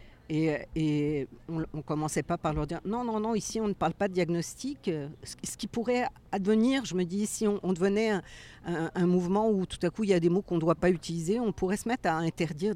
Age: 50-69